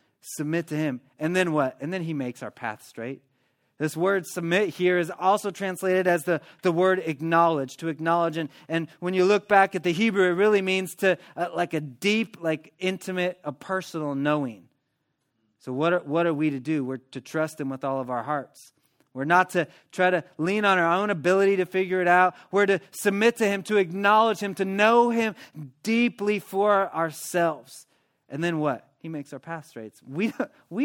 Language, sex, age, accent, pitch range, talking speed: English, male, 30-49, American, 150-195 Hz, 200 wpm